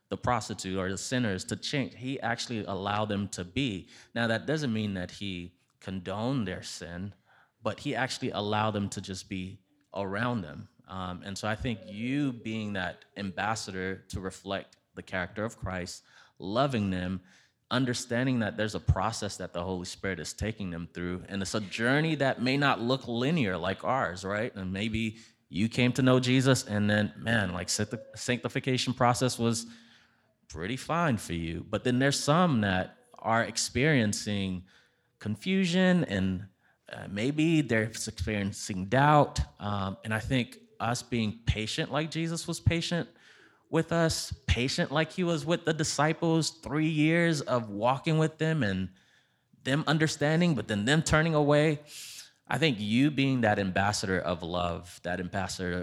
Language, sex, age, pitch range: English, male, 20-39, 95-135 Hz